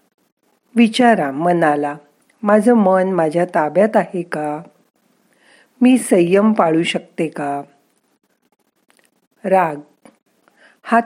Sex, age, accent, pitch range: female, 50-69, native, 160-230 Hz